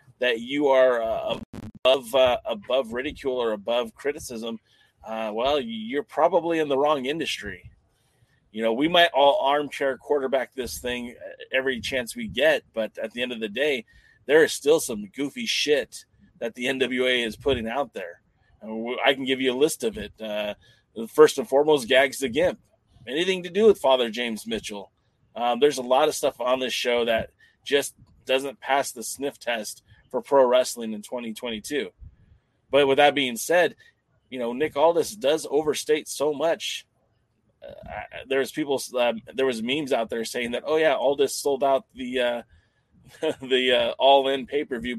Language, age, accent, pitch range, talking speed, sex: English, 30-49, American, 115-140 Hz, 175 wpm, male